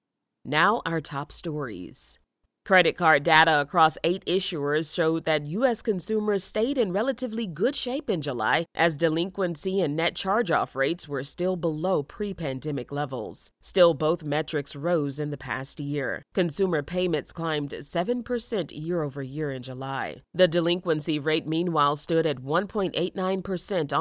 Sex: female